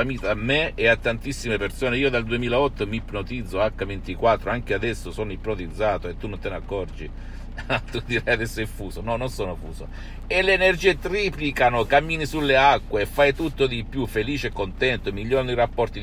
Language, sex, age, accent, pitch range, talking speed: Italian, male, 60-79, native, 85-120 Hz, 180 wpm